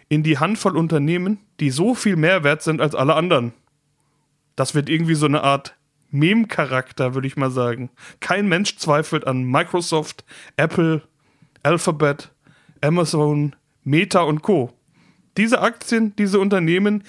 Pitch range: 140-180 Hz